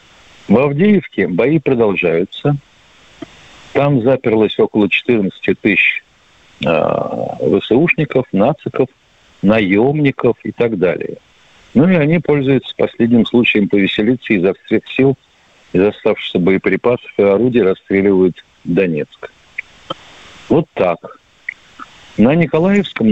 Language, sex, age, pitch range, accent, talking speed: Russian, male, 50-69, 105-150 Hz, native, 95 wpm